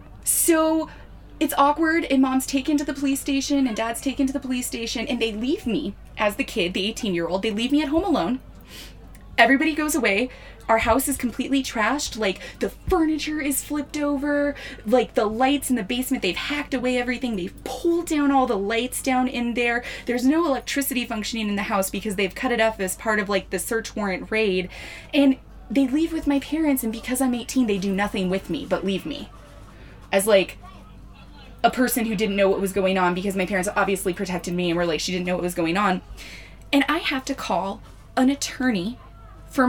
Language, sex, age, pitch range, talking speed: English, female, 20-39, 215-280 Hz, 210 wpm